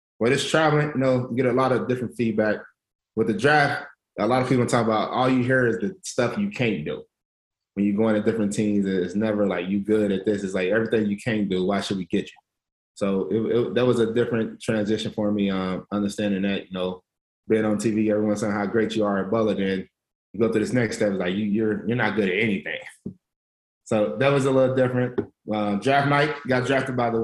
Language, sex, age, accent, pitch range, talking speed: English, male, 20-39, American, 105-125 Hz, 240 wpm